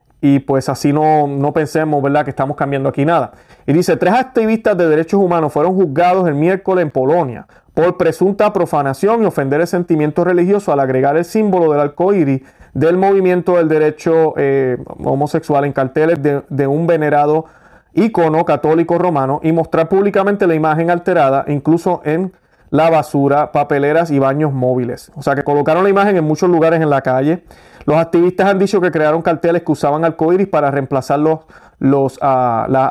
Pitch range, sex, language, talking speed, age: 140-170 Hz, male, Spanish, 175 wpm, 30-49